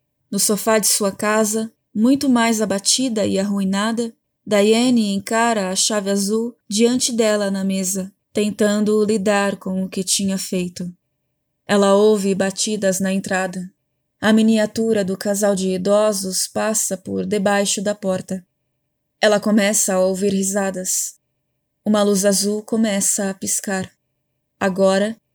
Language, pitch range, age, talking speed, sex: Portuguese, 185-210 Hz, 20-39, 130 wpm, female